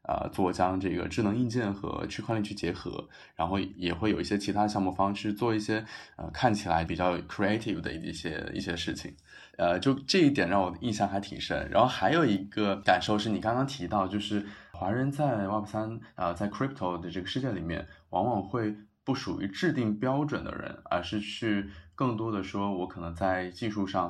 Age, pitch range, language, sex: 20-39, 90-110 Hz, Chinese, male